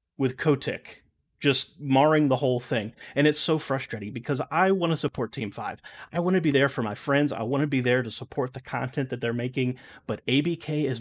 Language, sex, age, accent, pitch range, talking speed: English, male, 30-49, American, 120-150 Hz, 225 wpm